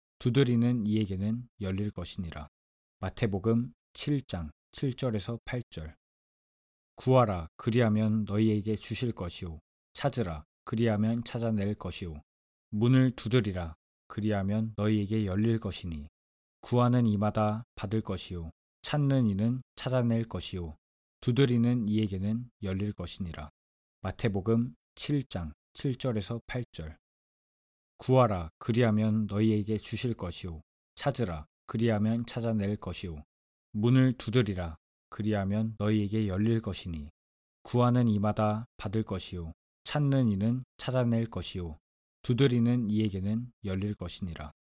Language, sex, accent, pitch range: Korean, male, native, 85-115 Hz